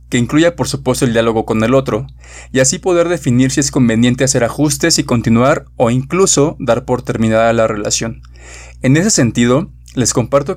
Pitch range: 115-140 Hz